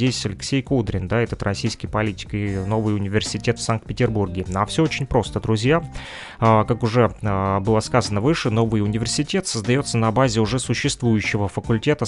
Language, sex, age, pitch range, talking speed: Russian, male, 20-39, 105-125 Hz, 155 wpm